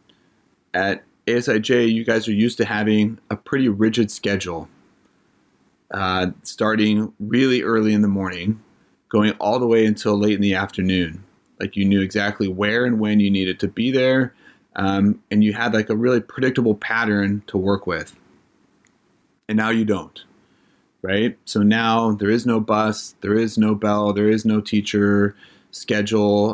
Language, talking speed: English, 165 wpm